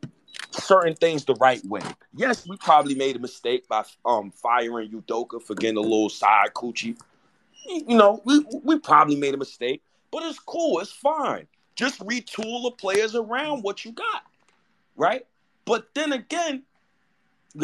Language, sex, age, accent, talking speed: English, male, 30-49, American, 160 wpm